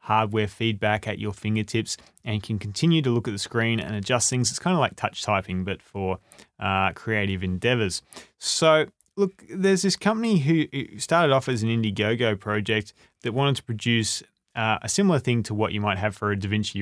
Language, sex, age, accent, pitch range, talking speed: English, male, 20-39, Australian, 105-135 Hz, 195 wpm